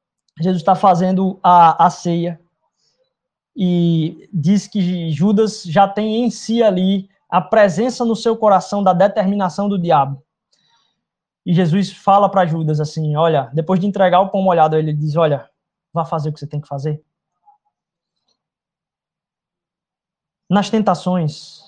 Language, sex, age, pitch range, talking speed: Portuguese, male, 20-39, 155-195 Hz, 140 wpm